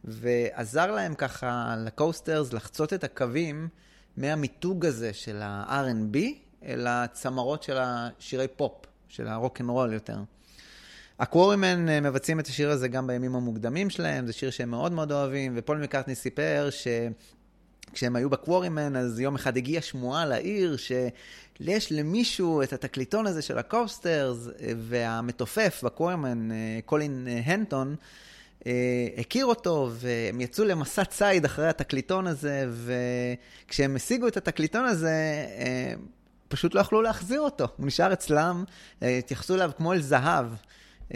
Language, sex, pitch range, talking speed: Hebrew, male, 120-165 Hz, 130 wpm